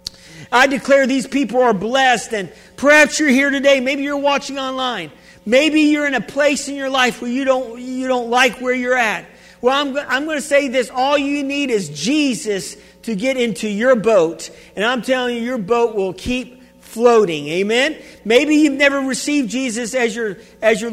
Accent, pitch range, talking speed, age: American, 190-255 Hz, 190 wpm, 50-69